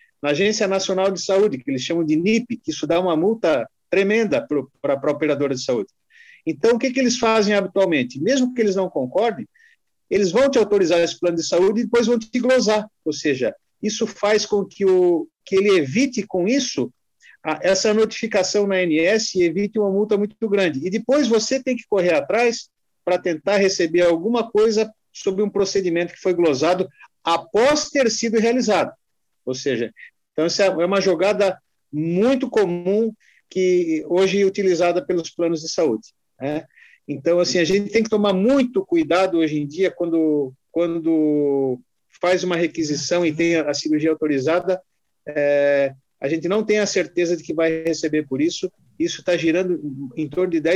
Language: Portuguese